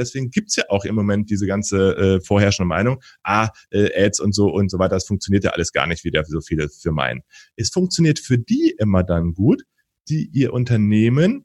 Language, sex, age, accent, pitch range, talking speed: German, male, 30-49, German, 95-130 Hz, 215 wpm